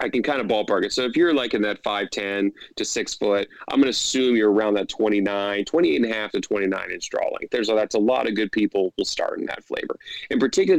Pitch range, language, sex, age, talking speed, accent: 105-115 Hz, English, male, 30-49, 260 wpm, American